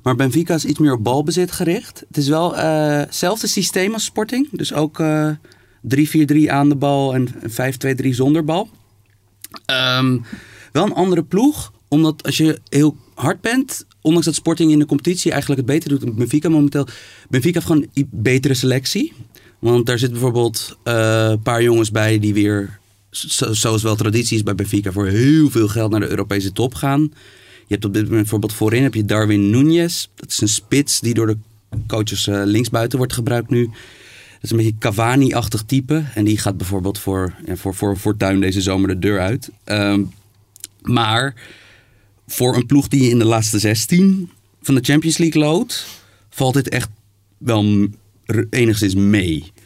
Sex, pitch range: male, 105-145 Hz